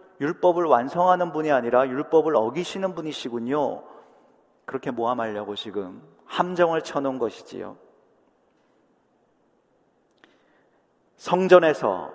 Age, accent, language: 40-59, native, Korean